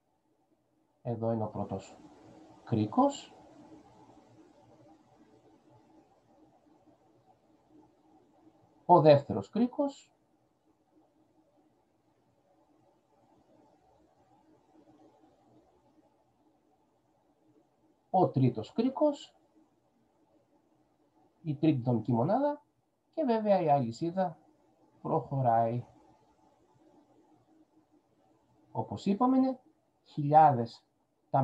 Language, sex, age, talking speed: Greek, male, 50-69, 50 wpm